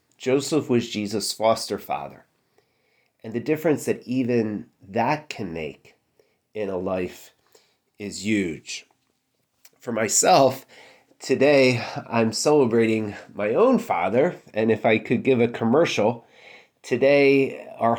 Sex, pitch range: male, 105-135 Hz